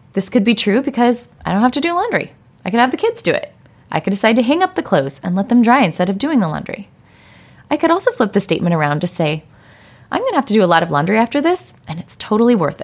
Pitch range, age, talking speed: 170-240 Hz, 20-39, 280 wpm